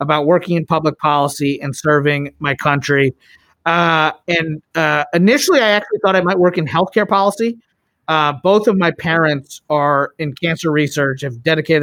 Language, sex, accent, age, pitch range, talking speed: English, male, American, 30-49, 155-185 Hz, 165 wpm